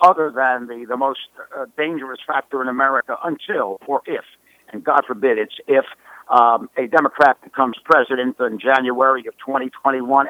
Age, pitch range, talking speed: 60-79, 130-155 Hz, 155 wpm